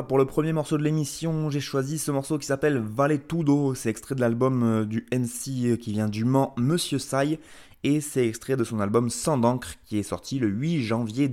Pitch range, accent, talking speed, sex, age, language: 100-135 Hz, French, 210 wpm, male, 20-39, French